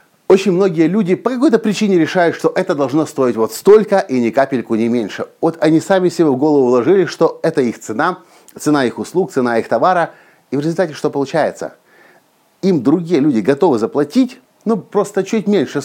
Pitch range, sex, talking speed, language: 130-185 Hz, male, 185 wpm, Russian